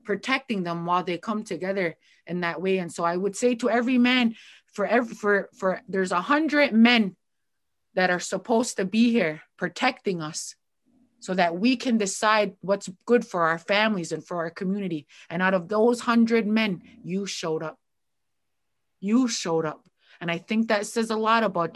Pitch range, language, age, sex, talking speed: 180-235 Hz, English, 30-49, female, 185 wpm